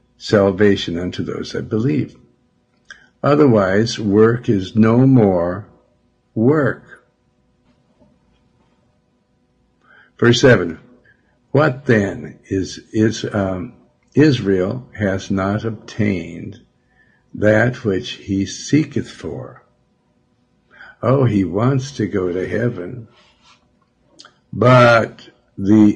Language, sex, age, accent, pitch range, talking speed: English, male, 60-79, American, 95-120 Hz, 85 wpm